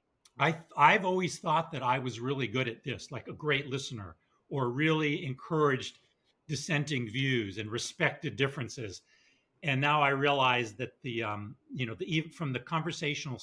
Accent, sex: American, male